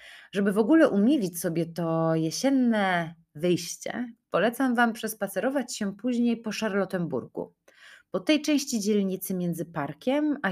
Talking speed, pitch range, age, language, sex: 125 wpm, 165-220 Hz, 30-49, Polish, female